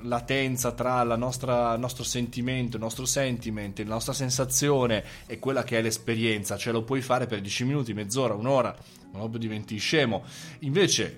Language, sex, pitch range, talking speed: Italian, male, 115-155 Hz, 170 wpm